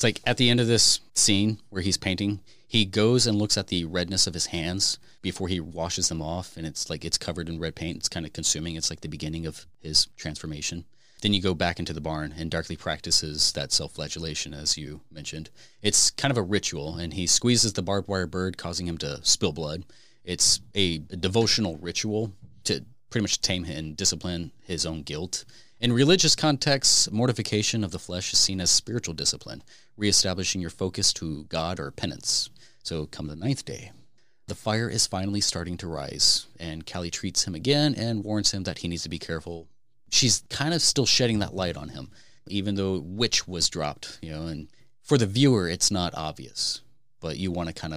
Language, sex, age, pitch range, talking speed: English, male, 30-49, 80-105 Hz, 205 wpm